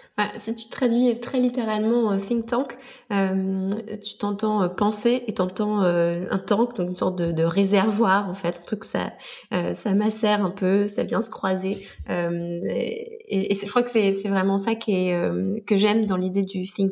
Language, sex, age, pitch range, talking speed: French, female, 20-39, 190-230 Hz, 215 wpm